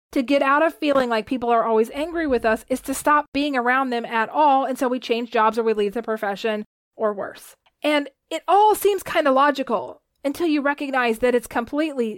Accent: American